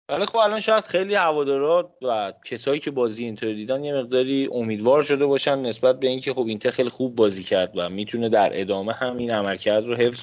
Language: Persian